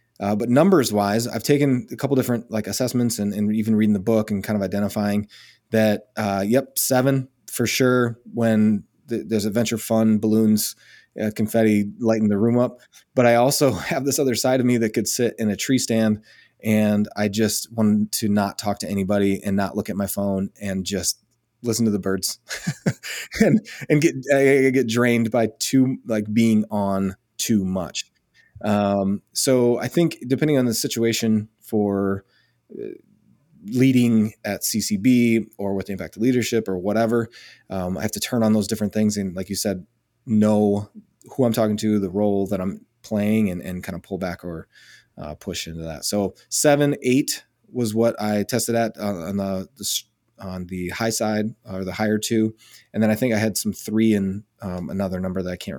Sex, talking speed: male, 190 wpm